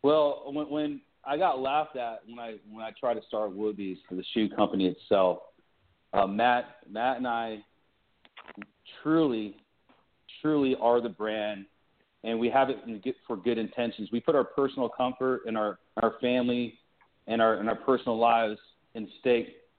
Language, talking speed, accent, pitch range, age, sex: English, 160 wpm, American, 110-135 Hz, 40-59, male